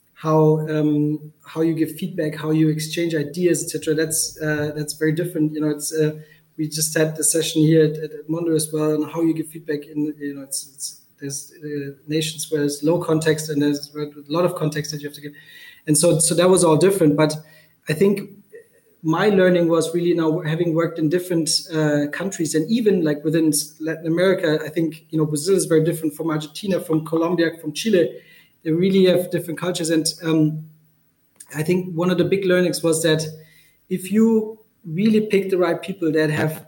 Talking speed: 205 wpm